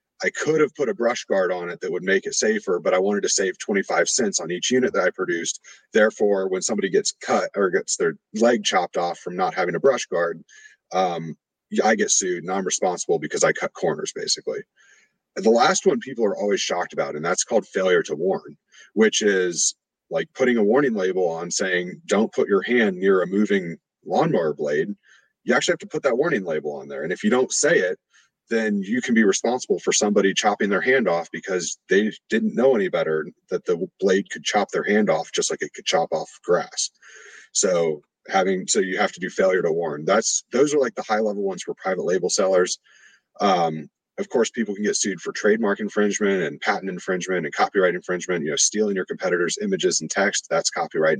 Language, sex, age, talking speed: English, male, 30-49, 215 wpm